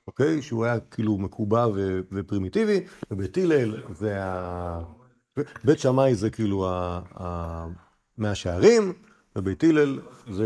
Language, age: Hebrew, 50-69